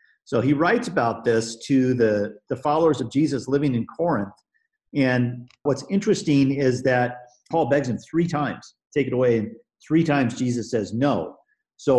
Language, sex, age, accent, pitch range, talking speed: English, male, 50-69, American, 120-145 Hz, 175 wpm